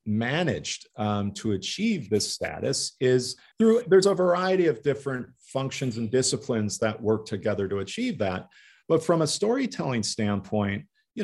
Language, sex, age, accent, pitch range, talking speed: English, male, 40-59, American, 110-150 Hz, 150 wpm